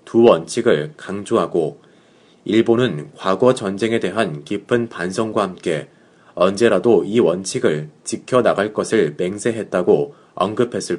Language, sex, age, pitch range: Korean, male, 30-49, 100-120 Hz